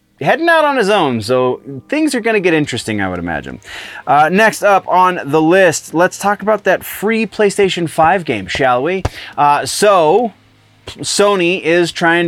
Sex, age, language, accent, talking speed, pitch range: male, 20-39, English, American, 175 wpm, 130-190 Hz